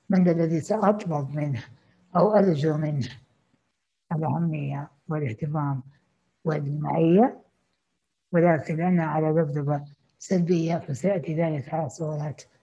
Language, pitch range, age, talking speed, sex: Arabic, 145-170 Hz, 60-79, 85 wpm, female